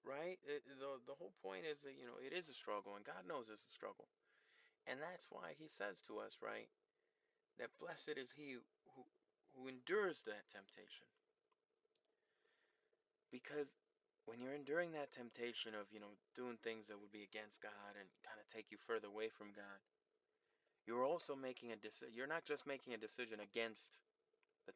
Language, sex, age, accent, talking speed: English, male, 20-39, American, 180 wpm